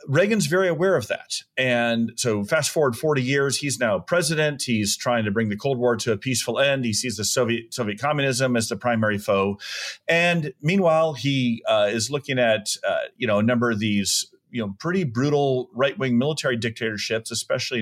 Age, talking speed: 30-49, 195 wpm